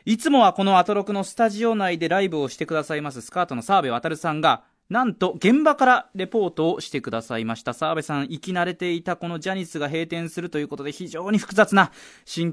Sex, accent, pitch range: male, native, 155-230 Hz